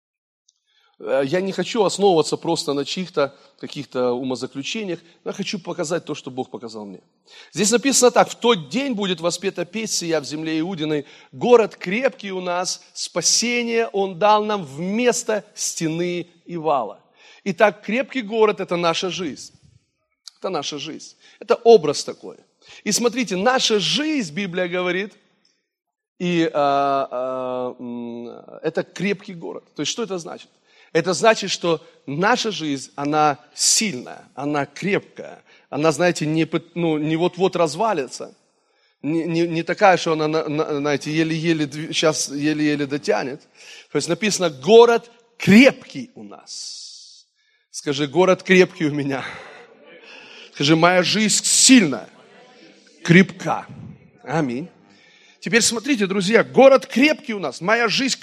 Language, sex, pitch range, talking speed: Russian, male, 155-220 Hz, 125 wpm